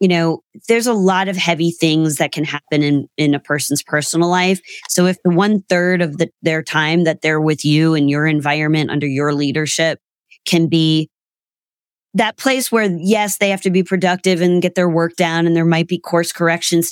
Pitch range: 155-185 Hz